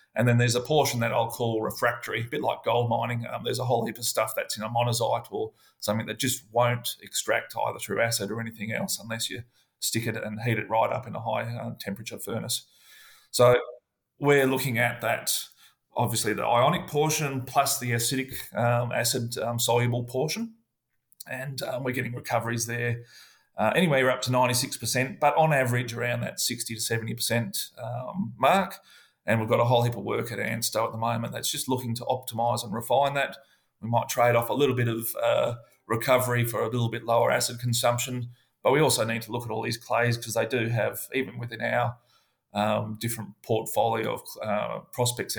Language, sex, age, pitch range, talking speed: English, male, 30-49, 115-125 Hz, 195 wpm